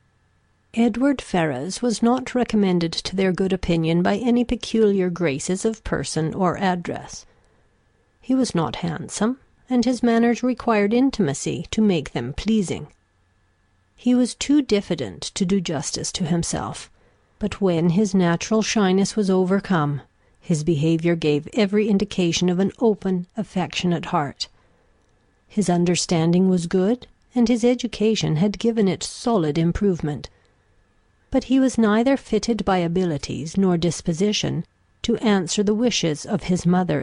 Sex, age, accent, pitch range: female, 50-69, American, 155-220 Hz